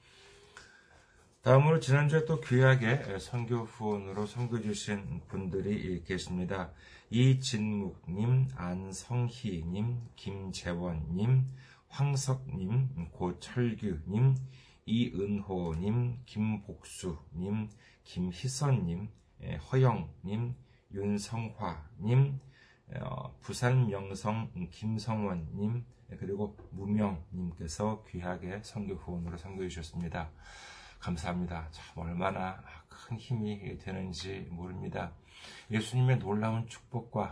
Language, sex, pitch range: Korean, male, 90-120 Hz